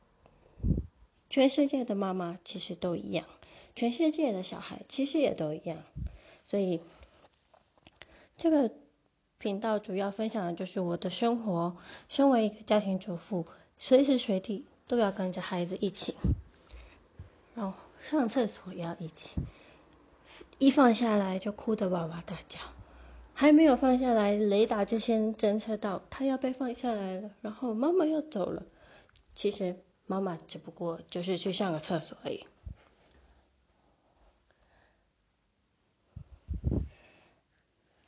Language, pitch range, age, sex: Chinese, 175-235 Hz, 20-39, female